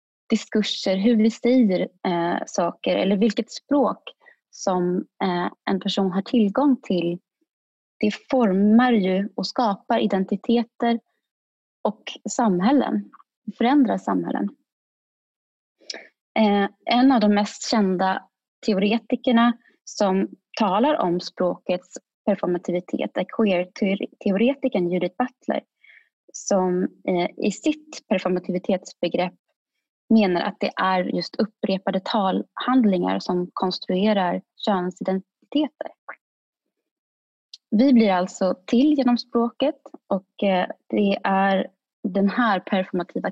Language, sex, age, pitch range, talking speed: Swedish, female, 20-39, 190-245 Hz, 90 wpm